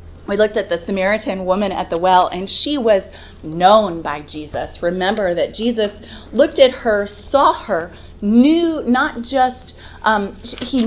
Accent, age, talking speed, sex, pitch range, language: American, 30-49, 155 wpm, female, 180-235 Hz, English